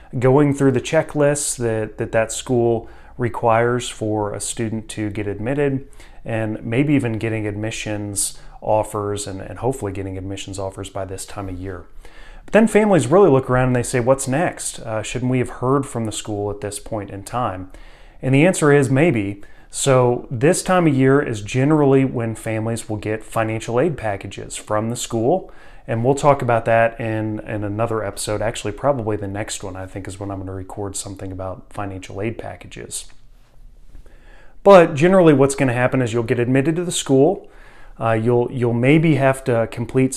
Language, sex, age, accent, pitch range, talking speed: English, male, 30-49, American, 105-135 Hz, 185 wpm